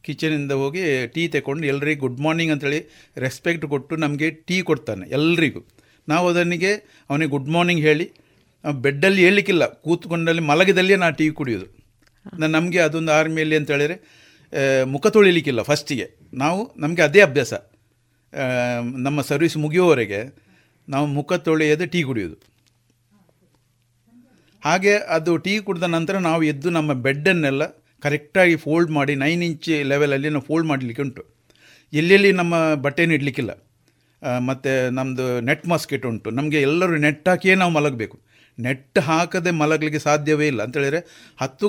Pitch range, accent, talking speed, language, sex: 135-165 Hz, native, 125 wpm, Kannada, male